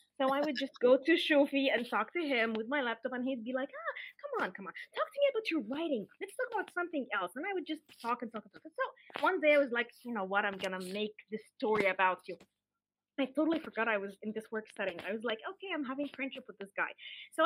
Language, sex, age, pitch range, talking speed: English, female, 20-39, 215-300 Hz, 275 wpm